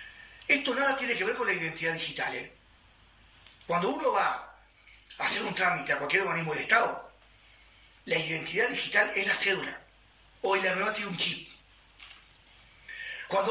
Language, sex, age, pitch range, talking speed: Spanish, male, 30-49, 165-255 Hz, 150 wpm